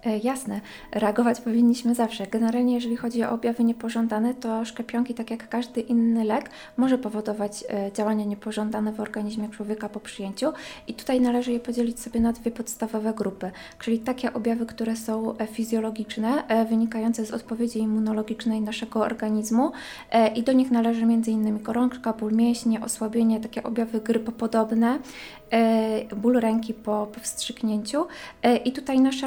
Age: 20-39